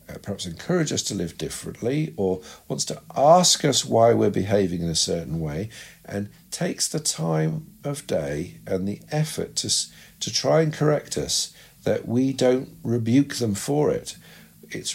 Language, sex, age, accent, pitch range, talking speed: English, male, 50-69, British, 90-125 Hz, 165 wpm